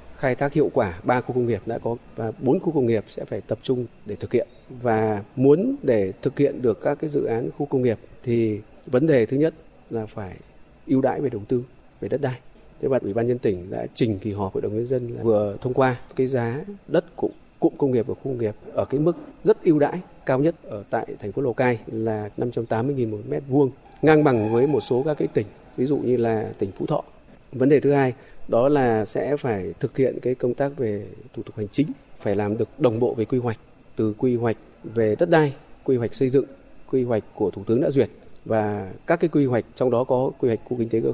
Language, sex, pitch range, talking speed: Vietnamese, male, 110-140 Hz, 250 wpm